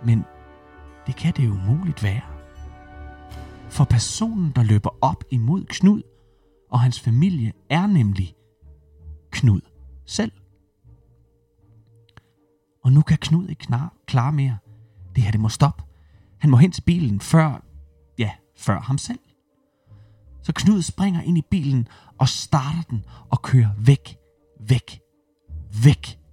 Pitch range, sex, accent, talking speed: 105-140 Hz, male, native, 130 wpm